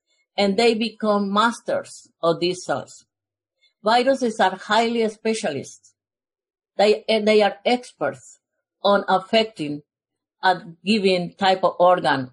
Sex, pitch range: female, 175-235 Hz